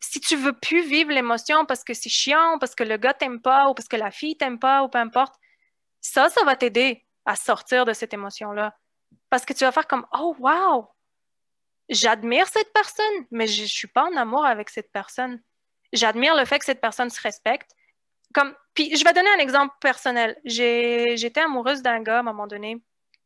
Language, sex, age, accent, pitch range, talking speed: French, female, 20-39, Canadian, 225-275 Hz, 210 wpm